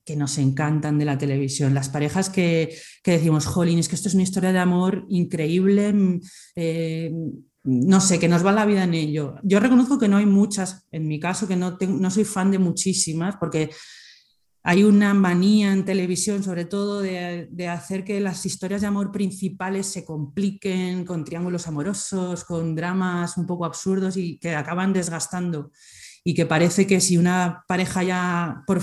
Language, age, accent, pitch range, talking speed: Spanish, 30-49, Spanish, 170-195 Hz, 180 wpm